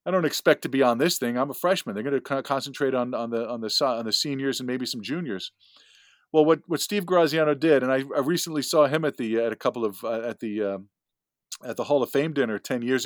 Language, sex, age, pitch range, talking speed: English, male, 40-59, 130-170 Hz, 270 wpm